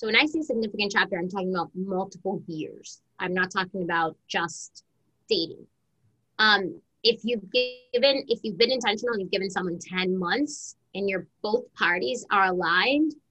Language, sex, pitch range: English, female, 190-240 Hz